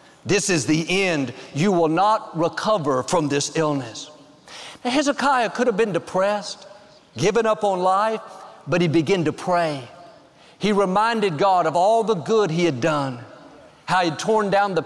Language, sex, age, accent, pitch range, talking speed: English, male, 50-69, American, 165-220 Hz, 165 wpm